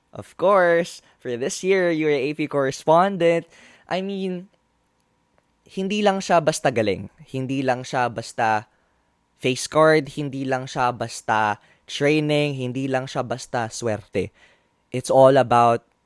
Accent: native